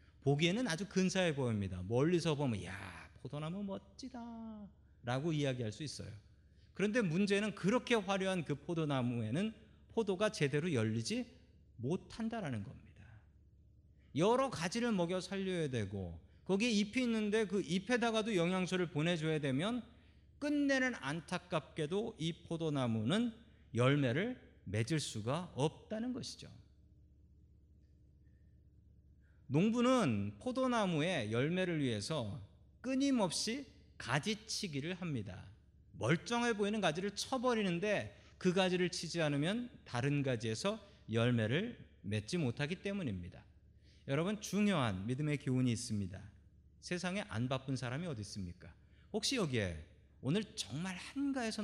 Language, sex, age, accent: Korean, male, 40-59, native